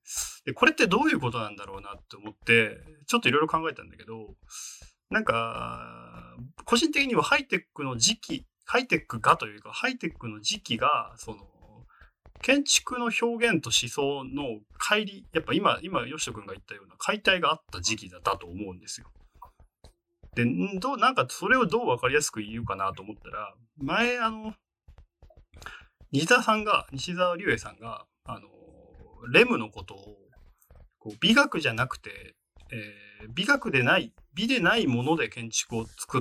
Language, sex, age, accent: Japanese, male, 30-49, native